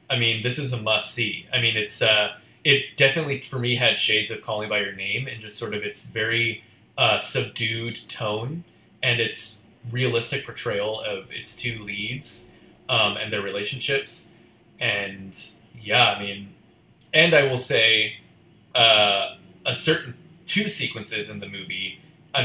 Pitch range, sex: 105-130 Hz, male